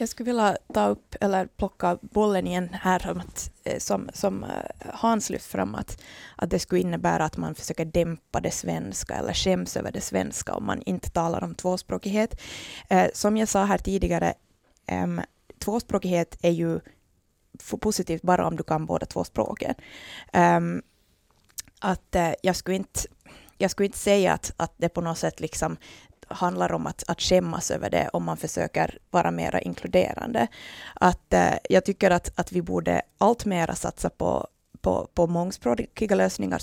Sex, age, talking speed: female, 20-39, 160 wpm